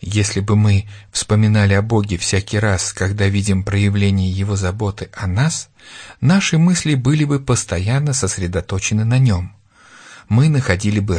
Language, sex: Russian, male